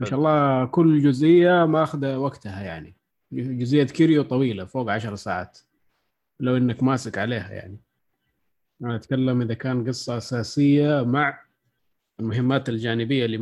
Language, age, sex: Arabic, 20-39, male